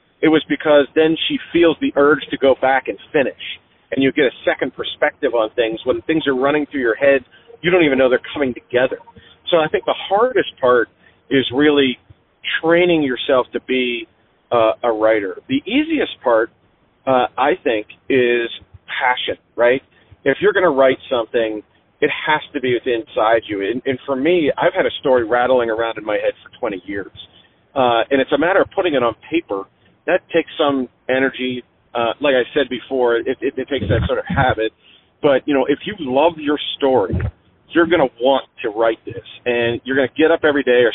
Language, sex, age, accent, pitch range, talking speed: English, male, 40-59, American, 115-150 Hz, 200 wpm